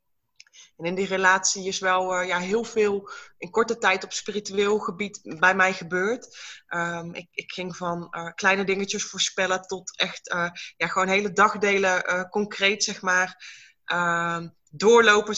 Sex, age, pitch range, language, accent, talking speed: female, 20-39, 185-210 Hz, Dutch, Dutch, 140 wpm